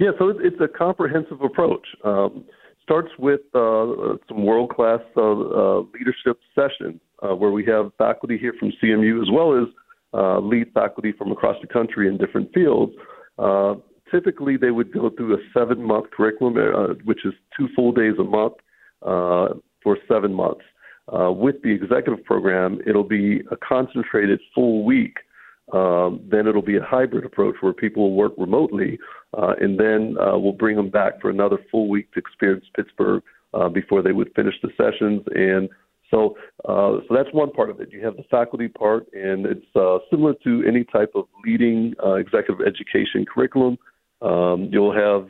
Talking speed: 175 wpm